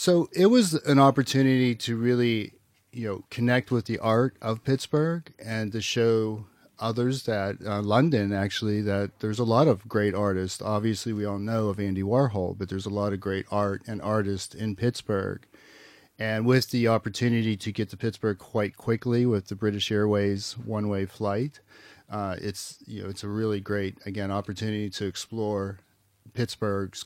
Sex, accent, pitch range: male, American, 100-115 Hz